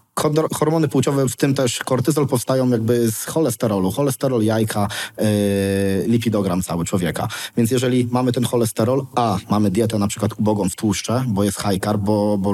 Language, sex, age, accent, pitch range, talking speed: Polish, male, 20-39, native, 105-125 Hz, 170 wpm